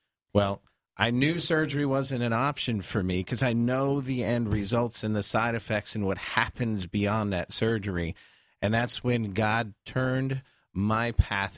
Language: English